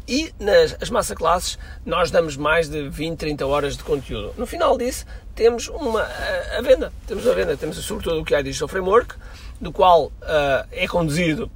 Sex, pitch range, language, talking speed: male, 130-190 Hz, Portuguese, 195 wpm